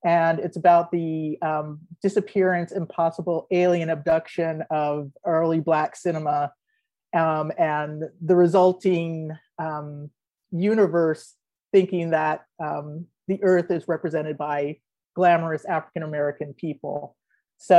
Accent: American